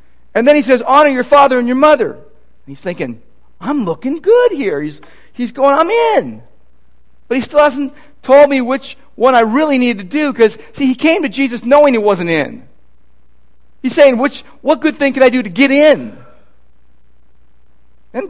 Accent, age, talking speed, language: American, 40-59, 190 wpm, English